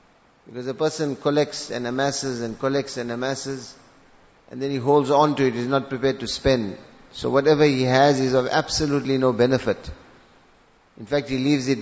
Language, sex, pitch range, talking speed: English, male, 125-145 Hz, 185 wpm